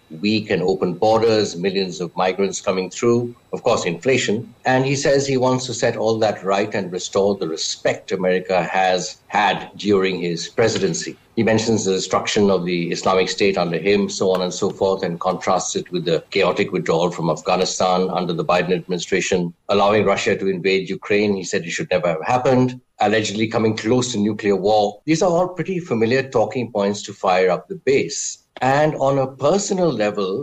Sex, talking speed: male, 185 wpm